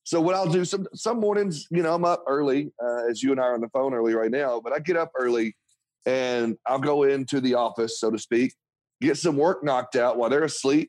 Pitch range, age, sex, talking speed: 125-150 Hz, 30-49, male, 255 wpm